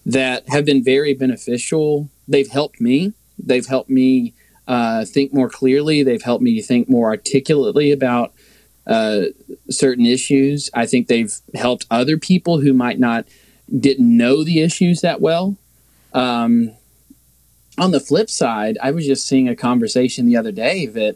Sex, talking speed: male, 155 wpm